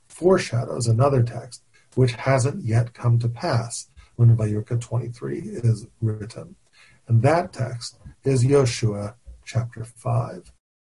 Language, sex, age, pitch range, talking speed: English, male, 40-59, 115-130 Hz, 120 wpm